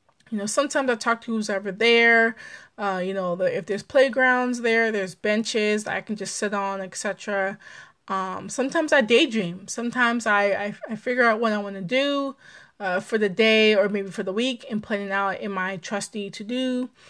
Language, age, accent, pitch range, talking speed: English, 20-39, American, 195-235 Hz, 185 wpm